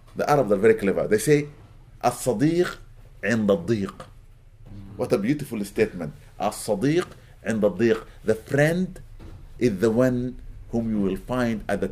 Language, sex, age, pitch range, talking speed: English, male, 50-69, 105-145 Hz, 110 wpm